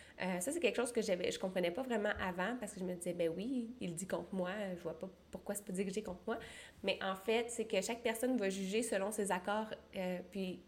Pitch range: 185-230 Hz